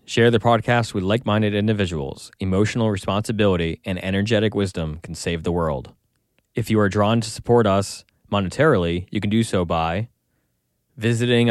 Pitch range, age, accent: 95-120 Hz, 20-39, American